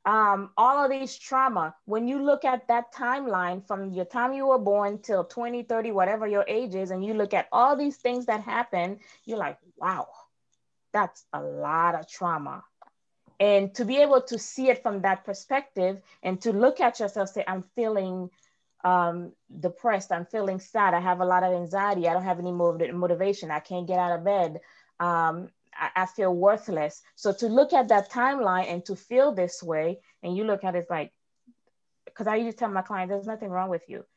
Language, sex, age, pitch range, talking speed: English, female, 20-39, 180-220 Hz, 200 wpm